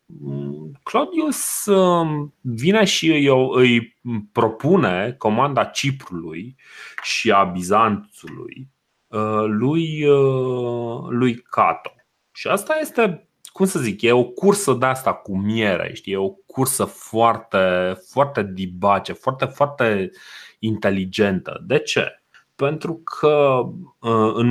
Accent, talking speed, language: native, 100 wpm, Romanian